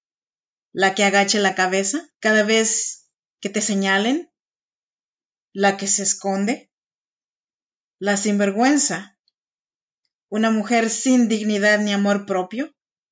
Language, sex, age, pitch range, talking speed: Spanish, female, 30-49, 200-240 Hz, 105 wpm